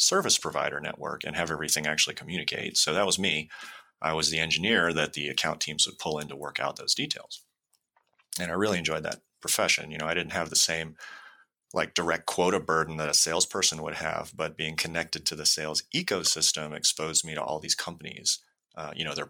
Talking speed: 210 wpm